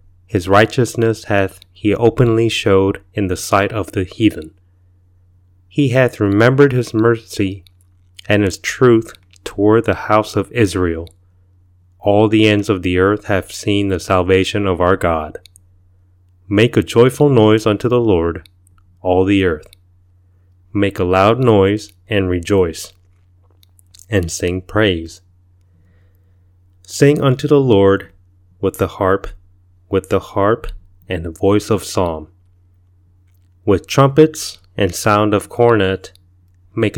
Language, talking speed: English, 130 wpm